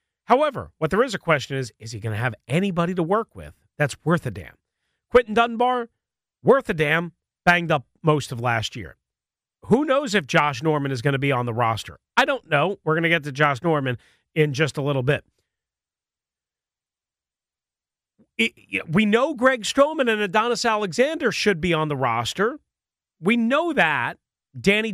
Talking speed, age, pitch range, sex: 180 wpm, 40-59, 140-225 Hz, male